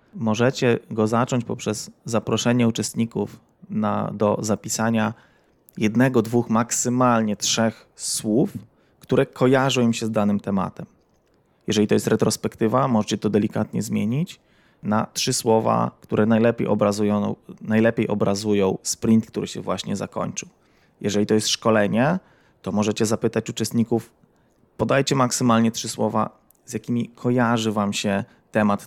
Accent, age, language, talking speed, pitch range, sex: native, 20-39, Polish, 120 wpm, 105-115 Hz, male